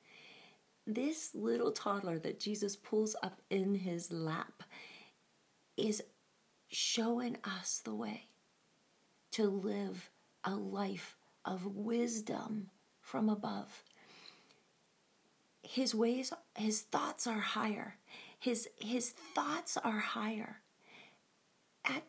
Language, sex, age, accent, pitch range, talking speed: English, female, 40-59, American, 195-225 Hz, 95 wpm